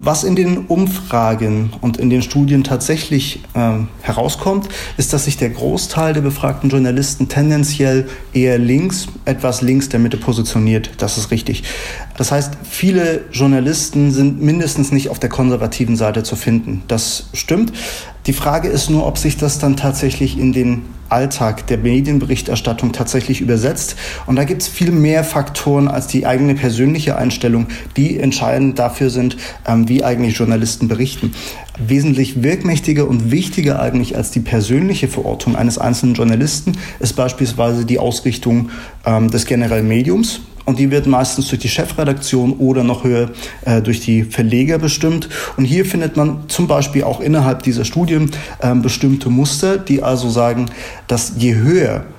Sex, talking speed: male, 155 wpm